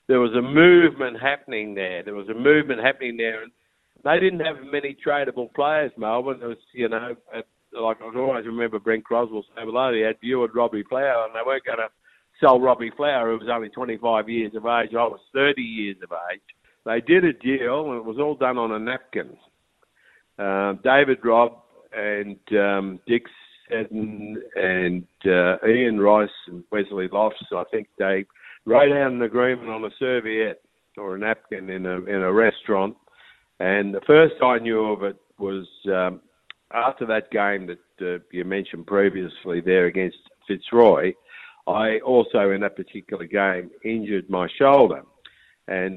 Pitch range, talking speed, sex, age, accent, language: 100-125 Hz, 175 wpm, male, 60-79, Australian, English